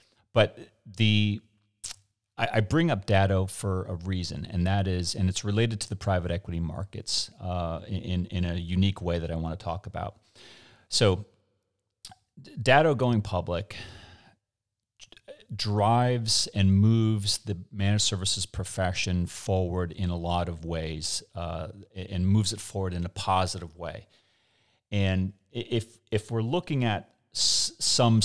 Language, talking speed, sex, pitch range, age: English, 145 wpm, male, 90-105 Hz, 30-49